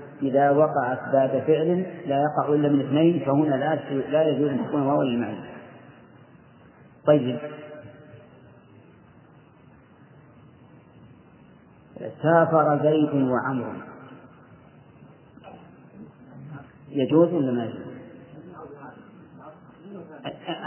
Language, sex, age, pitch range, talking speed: Arabic, male, 40-59, 130-155 Hz, 75 wpm